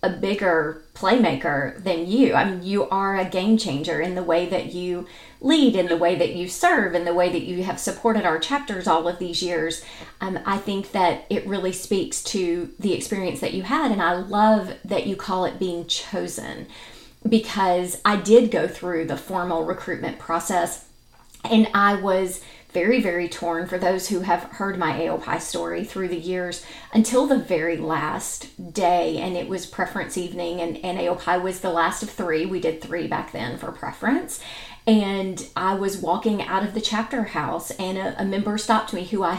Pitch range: 175-210 Hz